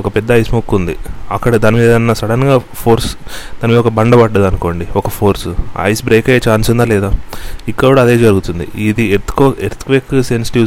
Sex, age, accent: male, 30-49, native